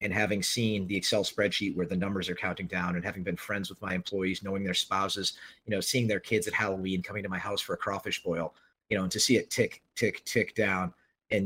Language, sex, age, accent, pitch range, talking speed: English, male, 30-49, American, 95-120 Hz, 250 wpm